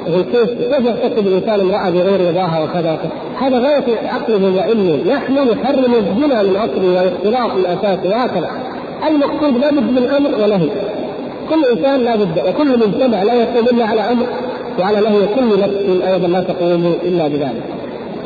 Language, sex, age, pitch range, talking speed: Arabic, male, 50-69, 195-245 Hz, 140 wpm